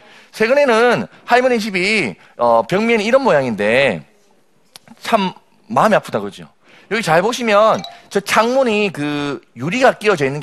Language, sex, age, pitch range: Korean, male, 40-59, 175-235 Hz